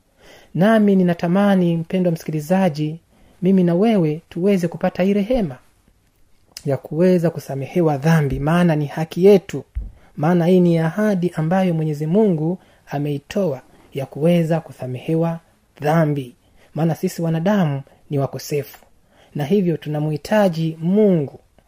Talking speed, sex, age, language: 110 wpm, male, 30-49, Swahili